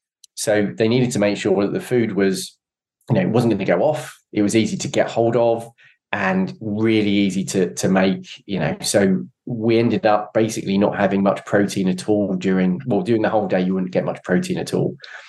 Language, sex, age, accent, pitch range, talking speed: English, male, 20-39, British, 100-115 Hz, 225 wpm